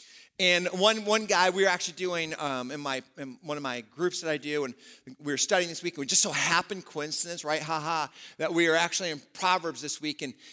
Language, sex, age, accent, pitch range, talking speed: English, male, 50-69, American, 140-195 Hz, 245 wpm